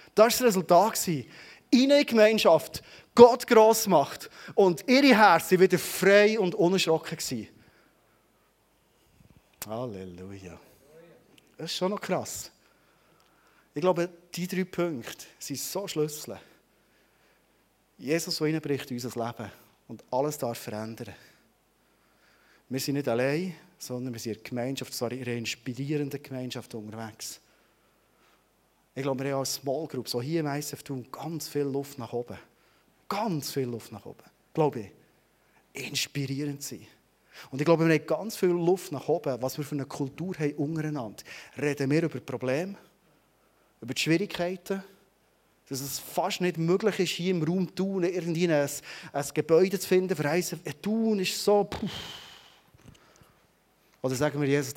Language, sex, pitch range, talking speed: German, male, 130-180 Hz, 145 wpm